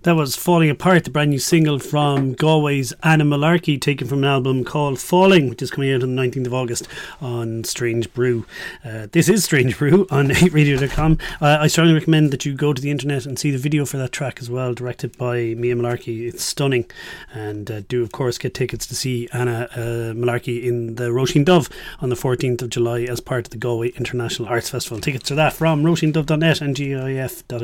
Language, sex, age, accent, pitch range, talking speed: English, male, 30-49, Irish, 120-150 Hz, 210 wpm